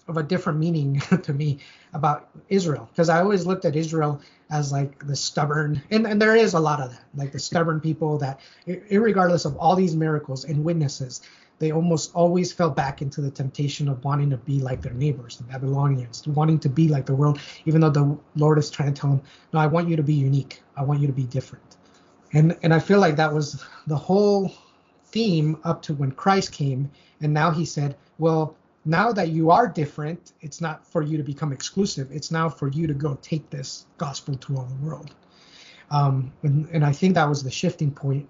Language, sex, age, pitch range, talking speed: English, male, 30-49, 140-165 Hz, 215 wpm